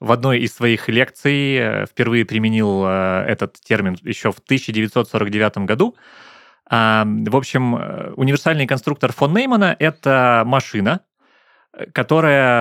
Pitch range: 110-140 Hz